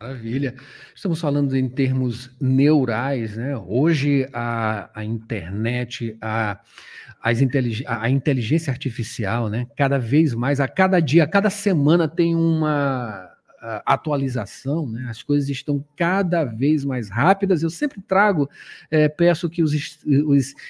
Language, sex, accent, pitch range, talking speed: Portuguese, male, Brazilian, 125-165 Hz, 135 wpm